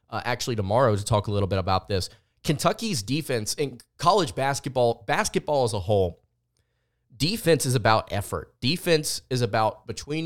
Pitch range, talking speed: 110-130 Hz, 160 wpm